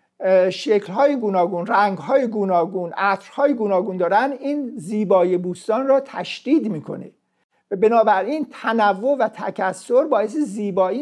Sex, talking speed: male, 105 wpm